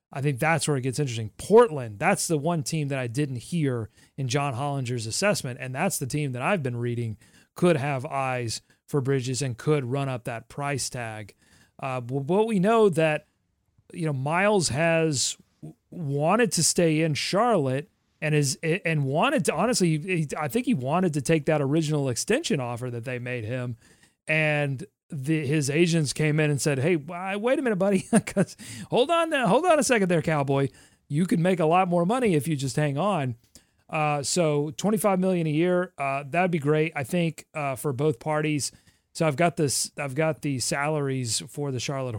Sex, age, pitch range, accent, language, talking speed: male, 30-49, 130-170 Hz, American, English, 190 wpm